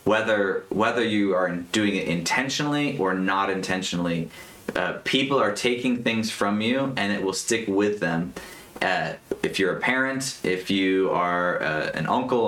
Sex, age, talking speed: male, 30-49, 165 wpm